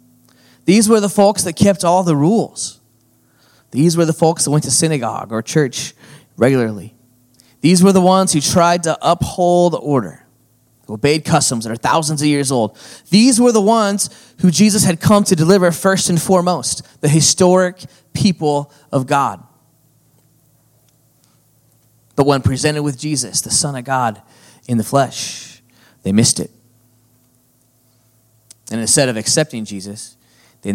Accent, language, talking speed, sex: American, English, 150 wpm, male